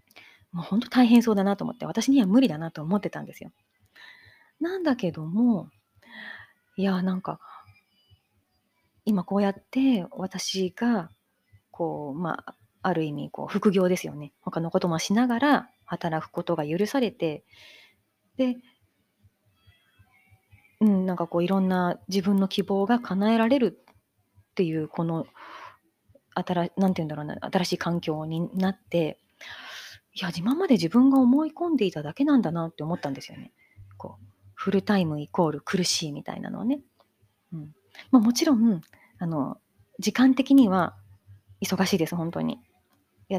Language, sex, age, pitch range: Japanese, female, 30-49, 155-220 Hz